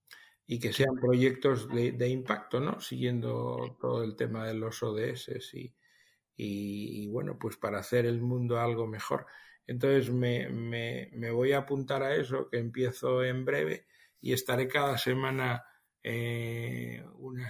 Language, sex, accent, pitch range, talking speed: Spanish, male, Spanish, 115-130 Hz, 150 wpm